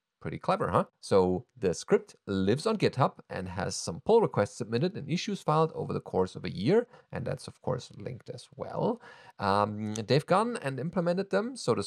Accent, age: German, 30-49